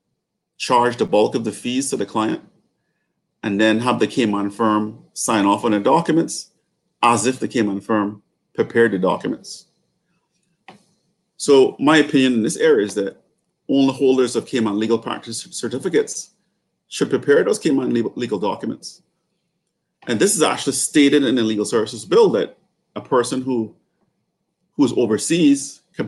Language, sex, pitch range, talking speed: English, male, 110-170 Hz, 150 wpm